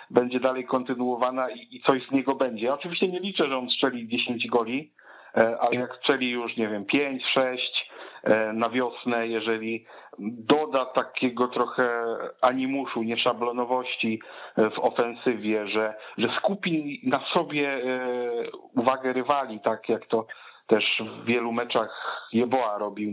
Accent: native